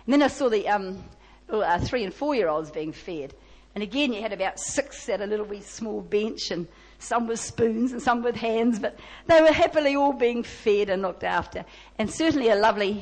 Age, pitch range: 50-69, 190-250 Hz